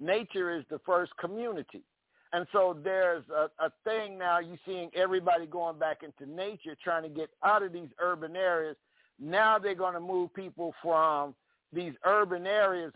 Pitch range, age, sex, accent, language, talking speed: 165-200 Hz, 50-69, male, American, English, 170 wpm